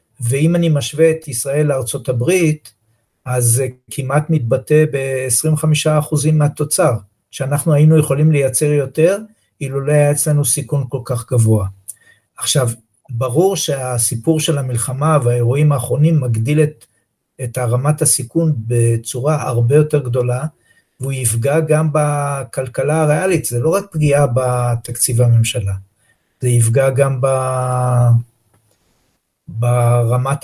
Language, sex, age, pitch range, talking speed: Hebrew, male, 50-69, 120-150 Hz, 110 wpm